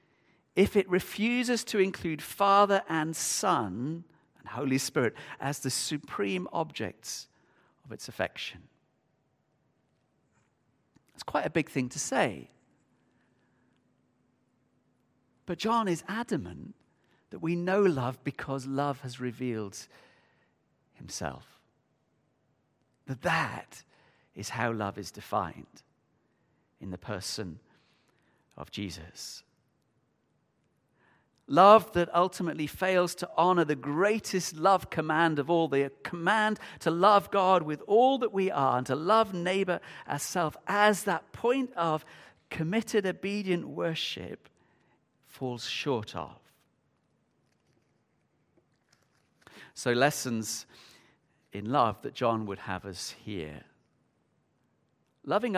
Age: 40-59